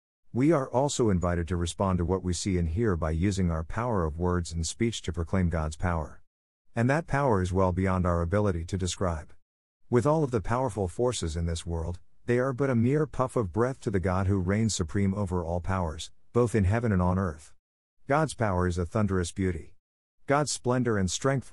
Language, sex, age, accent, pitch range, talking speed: English, male, 50-69, American, 85-115 Hz, 210 wpm